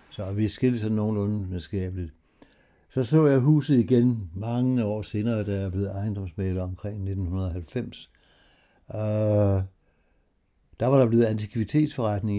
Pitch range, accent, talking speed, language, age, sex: 95-110 Hz, native, 130 wpm, Danish, 60-79, male